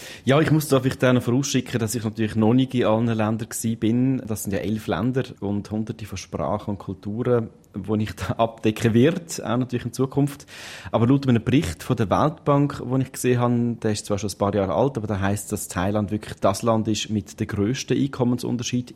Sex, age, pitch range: male, 30-49, 100-120 Hz